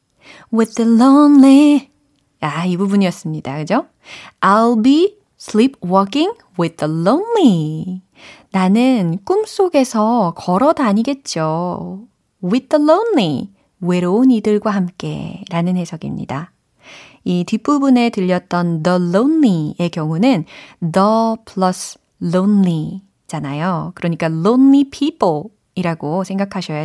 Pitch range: 170-235 Hz